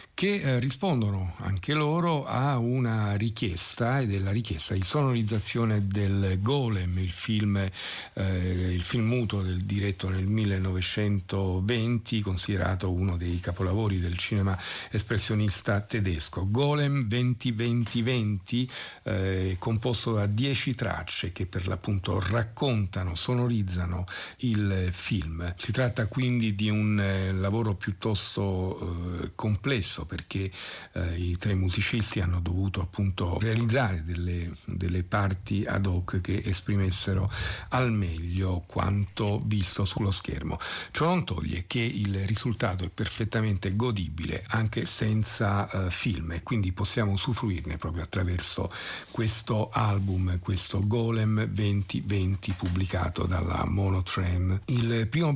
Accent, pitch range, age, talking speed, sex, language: native, 95-115 Hz, 50-69, 115 wpm, male, Italian